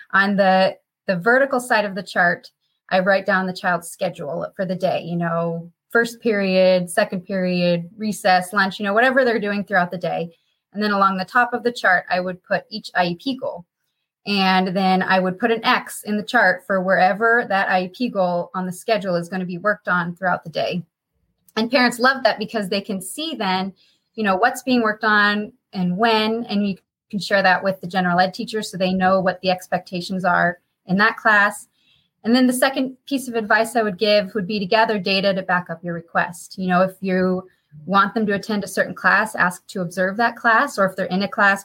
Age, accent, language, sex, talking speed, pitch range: 20-39, American, English, female, 220 wpm, 185-225 Hz